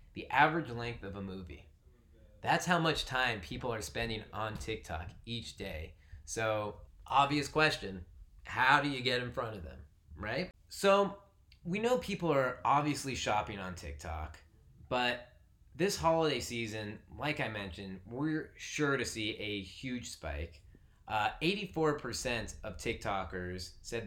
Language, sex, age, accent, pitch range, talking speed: English, male, 20-39, American, 90-125 Hz, 140 wpm